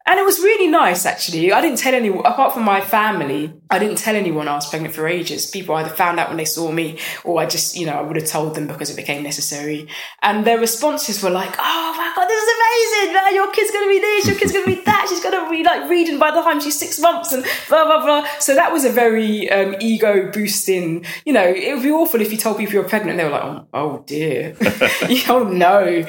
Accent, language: British, English